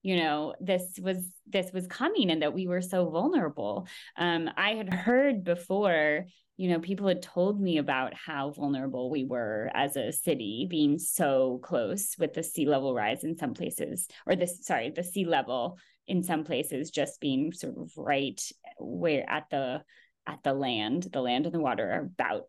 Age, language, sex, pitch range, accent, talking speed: 20-39, English, female, 175-230 Hz, American, 185 wpm